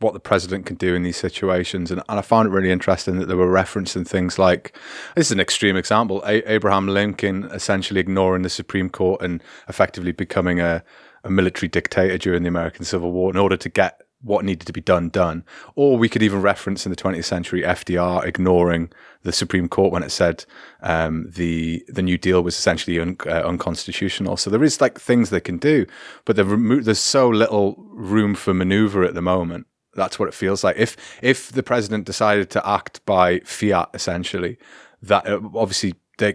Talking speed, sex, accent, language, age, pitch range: 200 wpm, male, British, English, 30-49, 90-105 Hz